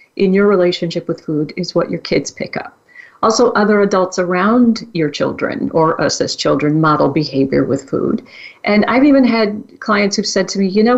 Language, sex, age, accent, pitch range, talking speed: English, female, 50-69, American, 175-225 Hz, 195 wpm